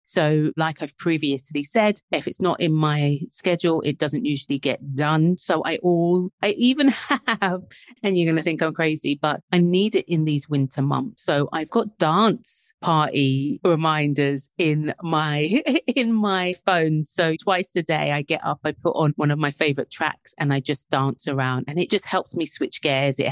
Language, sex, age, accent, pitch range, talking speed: English, female, 30-49, British, 150-180 Hz, 195 wpm